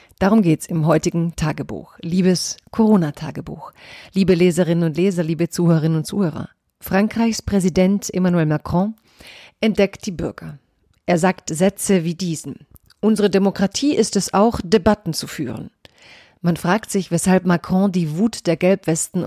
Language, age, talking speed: German, 40-59, 135 wpm